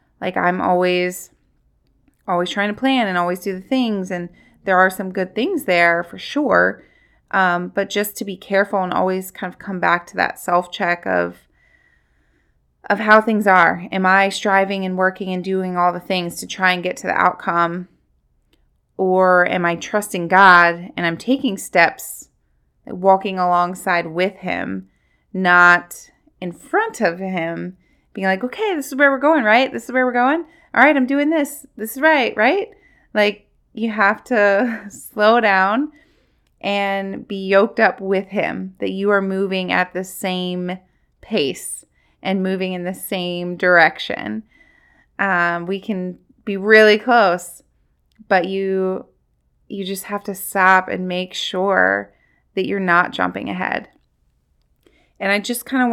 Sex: female